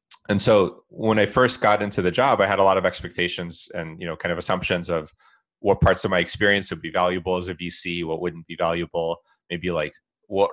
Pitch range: 85-100 Hz